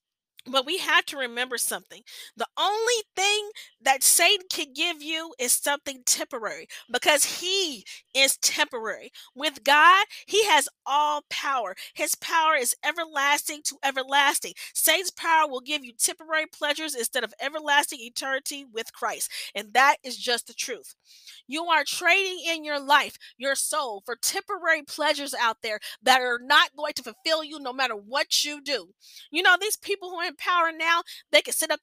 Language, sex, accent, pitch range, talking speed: English, female, American, 275-365 Hz, 170 wpm